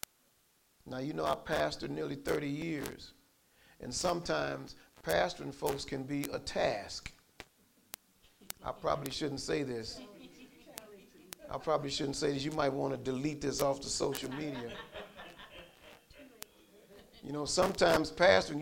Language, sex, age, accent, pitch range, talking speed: English, male, 50-69, American, 140-185 Hz, 130 wpm